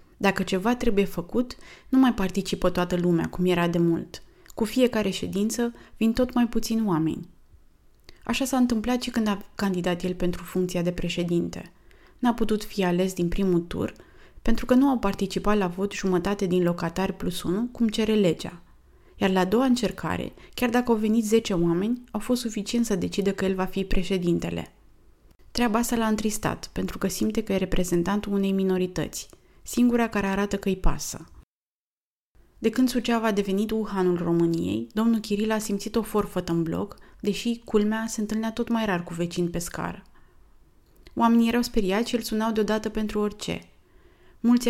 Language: Romanian